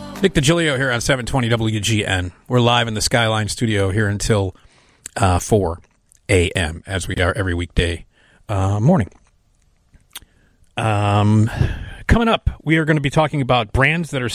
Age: 40-59